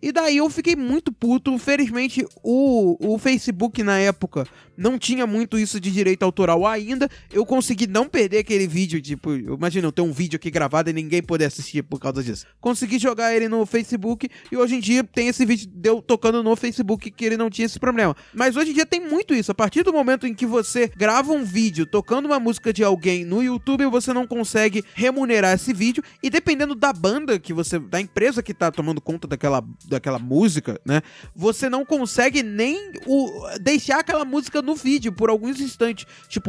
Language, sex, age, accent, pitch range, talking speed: Portuguese, male, 20-39, Brazilian, 190-255 Hz, 205 wpm